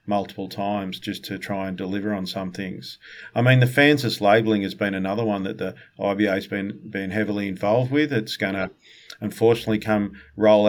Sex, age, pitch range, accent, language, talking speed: male, 50-69, 105-120 Hz, Australian, English, 185 wpm